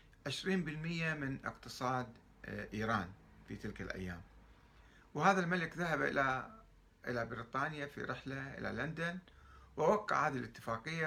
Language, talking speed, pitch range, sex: Arabic, 110 wpm, 100-135 Hz, male